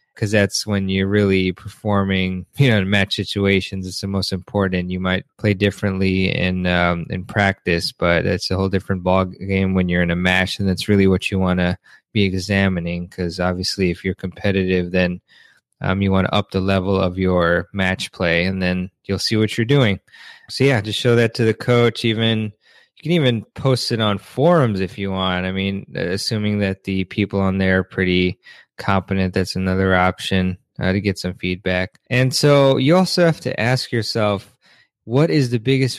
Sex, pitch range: male, 95-110 Hz